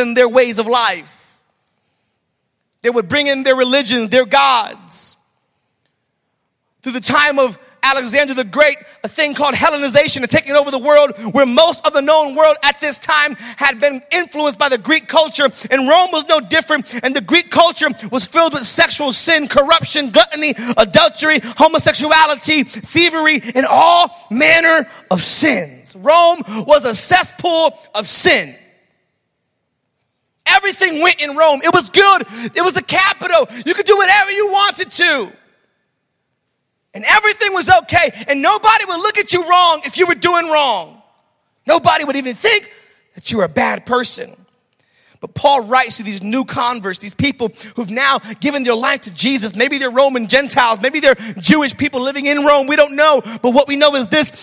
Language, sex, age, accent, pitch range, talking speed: English, male, 30-49, American, 255-320 Hz, 170 wpm